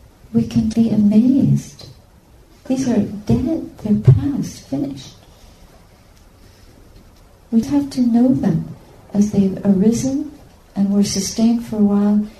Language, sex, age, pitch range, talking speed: English, female, 50-69, 145-215 Hz, 115 wpm